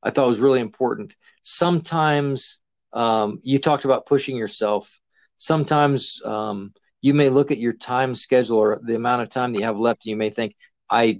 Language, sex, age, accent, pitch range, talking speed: English, male, 40-59, American, 115-140 Hz, 195 wpm